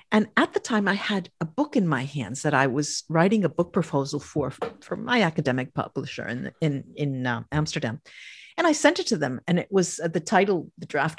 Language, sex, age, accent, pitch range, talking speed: English, female, 50-69, American, 135-175 Hz, 225 wpm